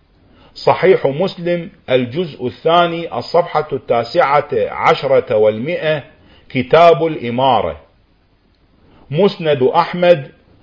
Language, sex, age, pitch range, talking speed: Arabic, male, 50-69, 125-175 Hz, 70 wpm